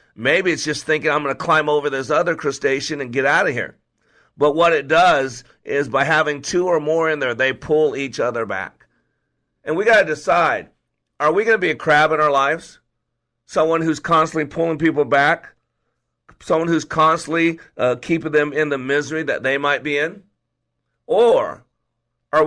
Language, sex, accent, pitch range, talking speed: English, male, American, 135-160 Hz, 190 wpm